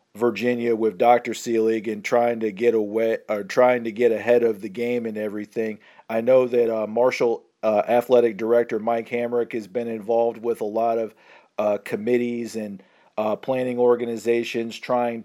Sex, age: male, 40-59